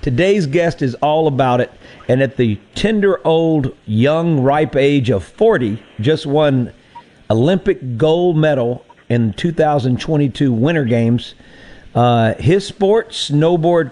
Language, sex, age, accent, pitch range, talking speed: English, male, 50-69, American, 120-160 Hz, 125 wpm